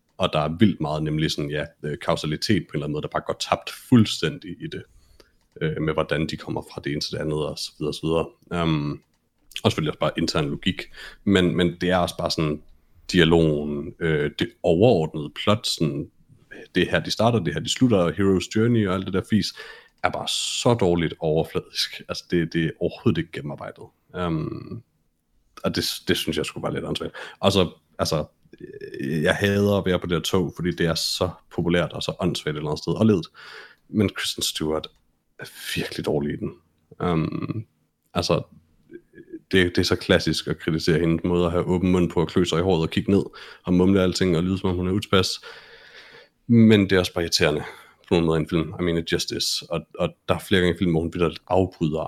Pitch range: 80-95 Hz